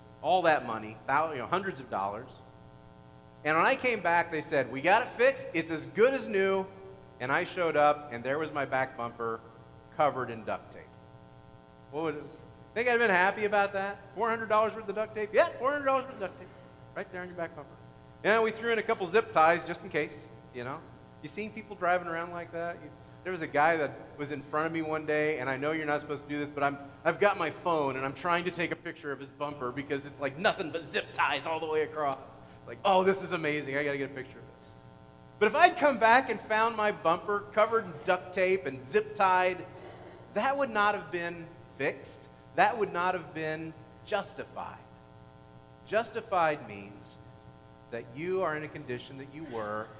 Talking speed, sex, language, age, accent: 220 wpm, male, English, 40-59, American